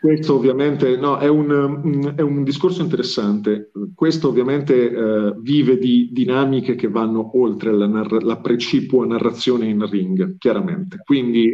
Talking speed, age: 130 wpm, 40-59